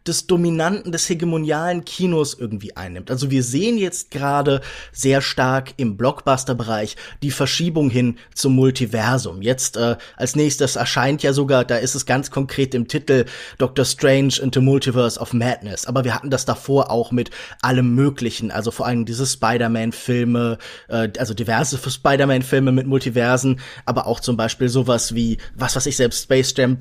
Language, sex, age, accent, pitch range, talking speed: German, male, 20-39, German, 125-165 Hz, 170 wpm